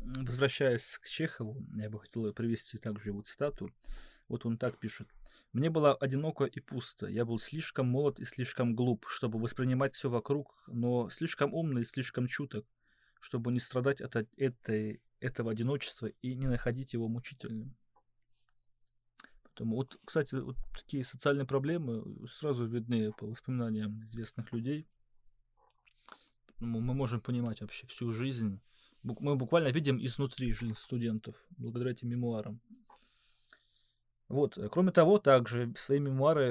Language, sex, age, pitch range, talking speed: Russian, male, 20-39, 115-145 Hz, 140 wpm